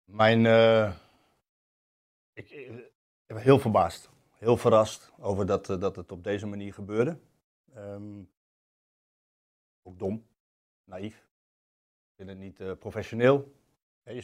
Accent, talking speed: Dutch, 115 wpm